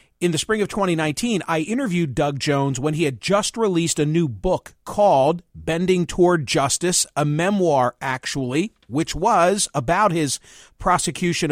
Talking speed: 150 wpm